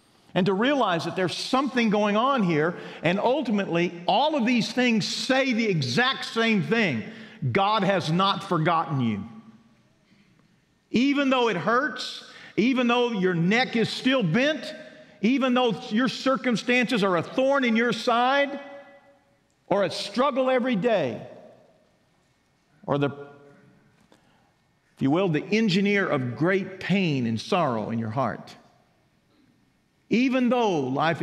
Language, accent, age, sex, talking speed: English, American, 50-69, male, 135 wpm